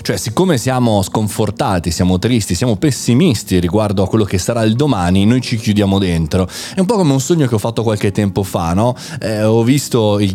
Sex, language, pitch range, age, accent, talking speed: male, Italian, 95-125 Hz, 20-39, native, 210 wpm